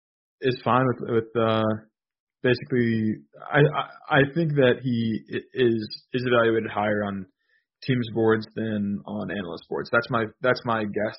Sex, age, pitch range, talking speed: male, 20-39, 110-130 Hz, 150 wpm